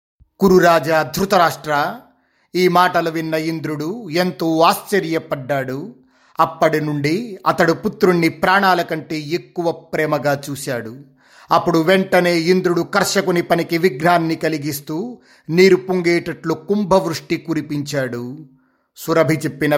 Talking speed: 95 wpm